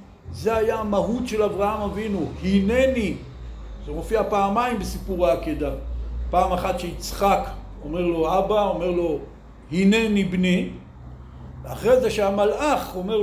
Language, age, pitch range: Hebrew, 60-79, 170-225 Hz